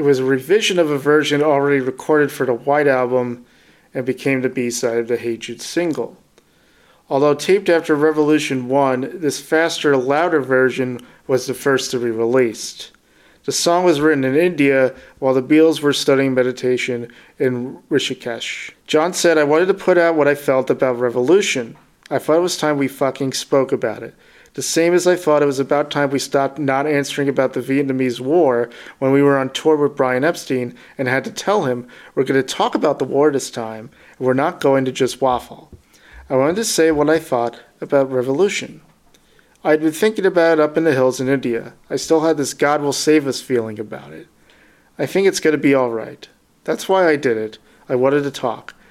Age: 40-59